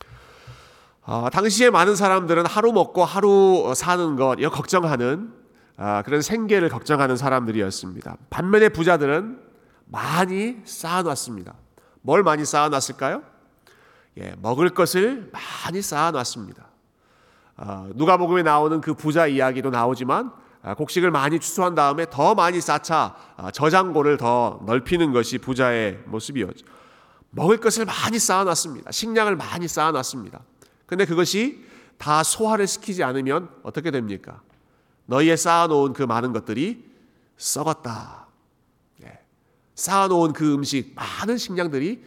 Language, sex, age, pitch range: Korean, male, 40-59, 135-195 Hz